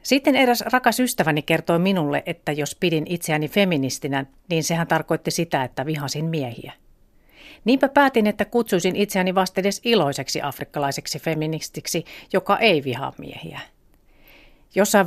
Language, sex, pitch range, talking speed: Finnish, female, 155-200 Hz, 125 wpm